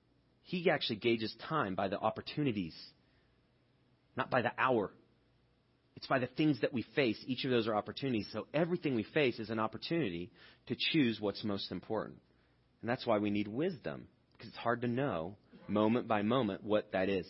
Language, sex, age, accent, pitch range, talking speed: English, male, 30-49, American, 105-145 Hz, 180 wpm